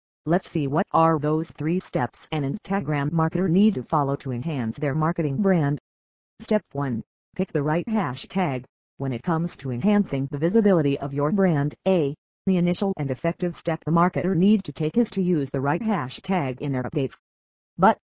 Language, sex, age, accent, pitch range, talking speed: English, female, 40-59, American, 140-185 Hz, 180 wpm